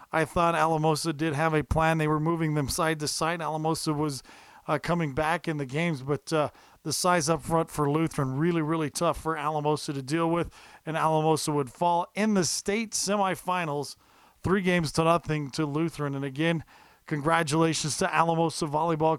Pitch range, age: 150-180 Hz, 40-59